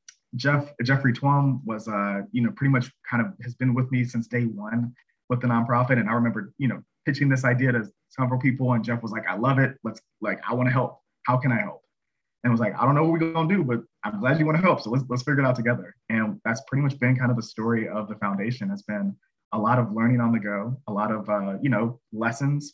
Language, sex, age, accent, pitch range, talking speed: English, male, 20-39, American, 115-135 Hz, 270 wpm